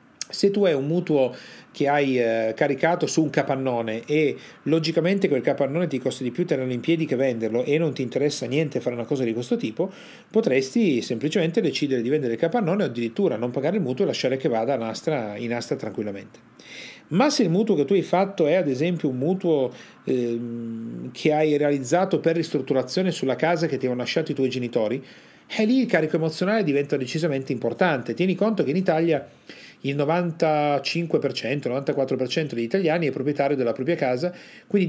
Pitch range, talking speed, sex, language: 130-175 Hz, 185 wpm, male, Italian